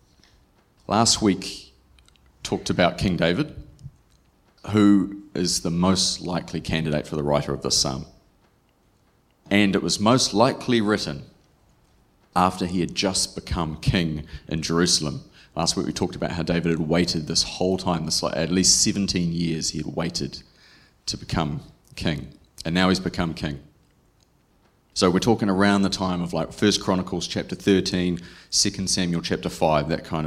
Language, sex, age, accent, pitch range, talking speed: English, male, 30-49, Australian, 80-100 Hz, 155 wpm